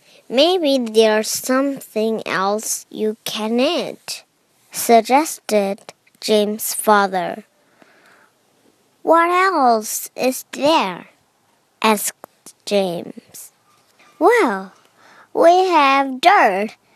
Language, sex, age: Chinese, male, 20-39